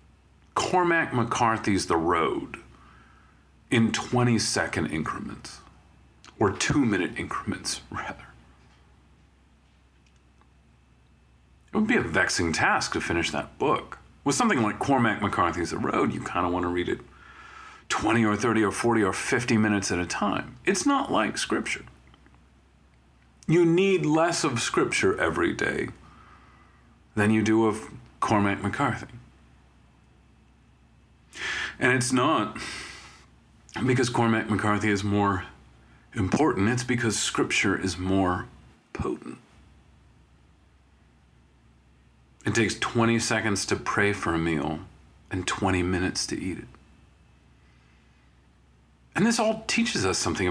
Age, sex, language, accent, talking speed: 40-59, male, English, American, 120 wpm